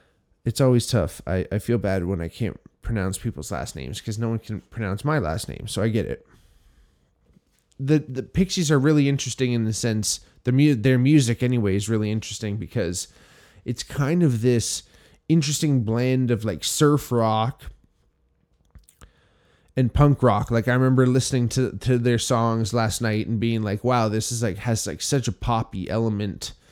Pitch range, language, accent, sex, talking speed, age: 105-125 Hz, English, American, male, 175 wpm, 20-39